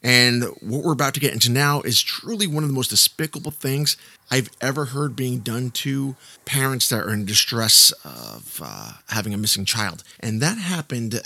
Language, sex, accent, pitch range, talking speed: English, male, American, 115-165 Hz, 190 wpm